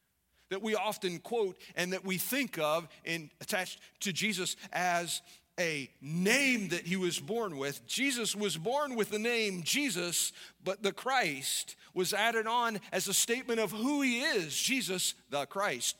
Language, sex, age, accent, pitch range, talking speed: English, male, 40-59, American, 135-215 Hz, 165 wpm